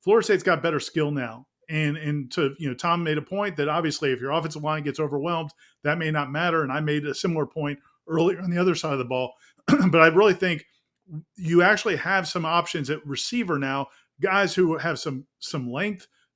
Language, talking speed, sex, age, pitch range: English, 215 wpm, male, 40-59, 145-180 Hz